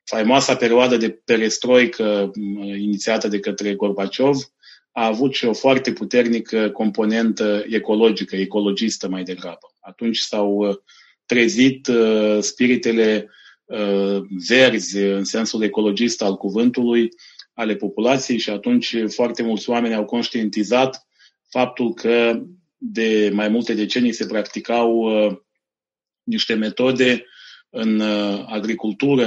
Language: Romanian